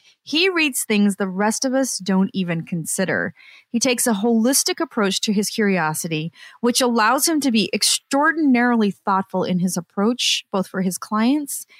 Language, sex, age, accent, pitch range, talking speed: English, female, 30-49, American, 185-250 Hz, 165 wpm